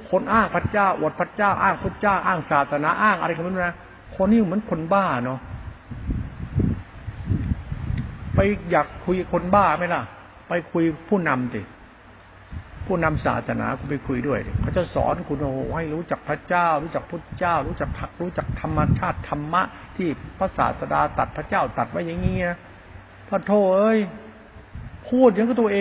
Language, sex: Thai, male